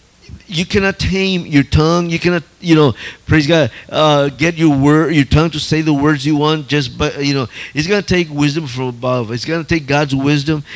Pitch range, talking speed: 140-180 Hz, 225 wpm